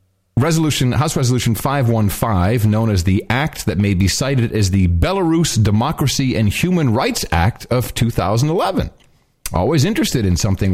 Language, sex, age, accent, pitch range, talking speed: English, male, 40-59, American, 105-150 Hz, 145 wpm